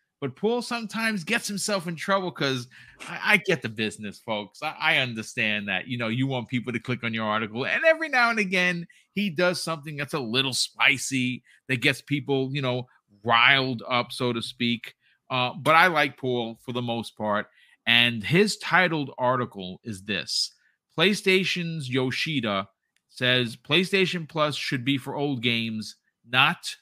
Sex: male